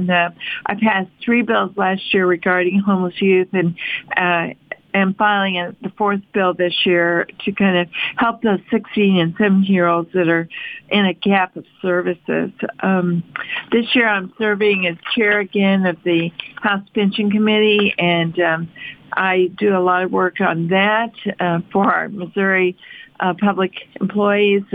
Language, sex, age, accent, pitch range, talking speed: English, female, 50-69, American, 175-200 Hz, 160 wpm